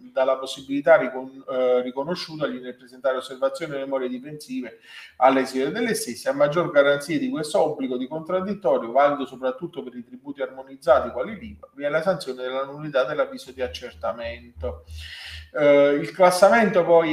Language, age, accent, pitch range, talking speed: Italian, 30-49, native, 130-175 Hz, 145 wpm